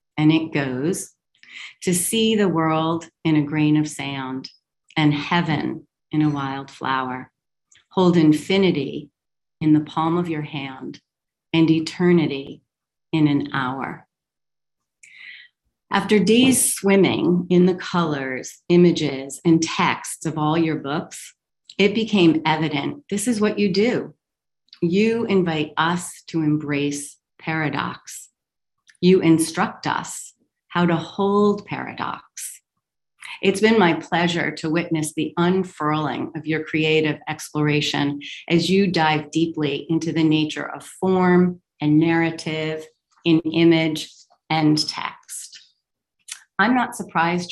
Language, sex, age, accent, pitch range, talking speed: English, female, 40-59, American, 150-180 Hz, 120 wpm